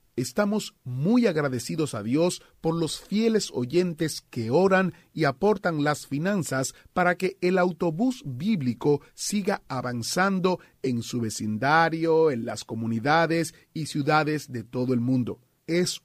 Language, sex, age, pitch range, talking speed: Spanish, male, 40-59, 125-175 Hz, 130 wpm